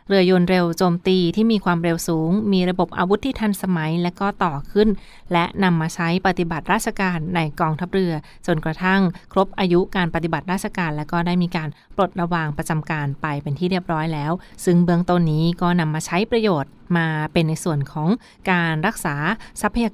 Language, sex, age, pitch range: Thai, female, 20-39, 160-190 Hz